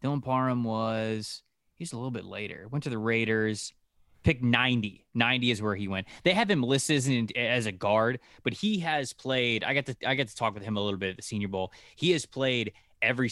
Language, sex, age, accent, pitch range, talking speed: English, male, 20-39, American, 105-130 Hz, 215 wpm